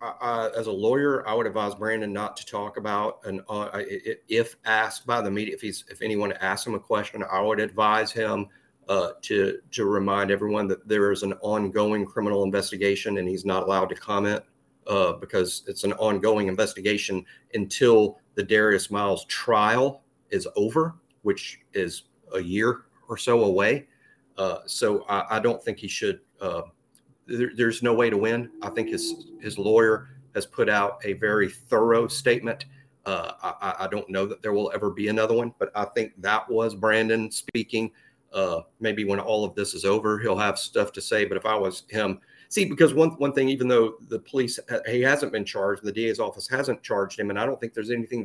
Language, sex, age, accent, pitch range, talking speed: English, male, 40-59, American, 105-135 Hz, 195 wpm